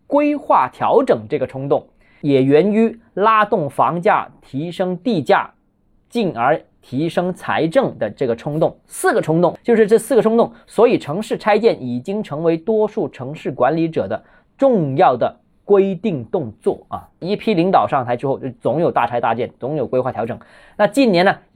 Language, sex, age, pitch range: Chinese, male, 20-39, 145-215 Hz